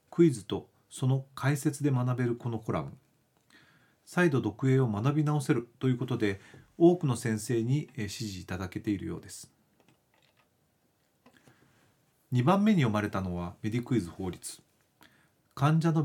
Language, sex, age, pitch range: Japanese, male, 40-59, 105-145 Hz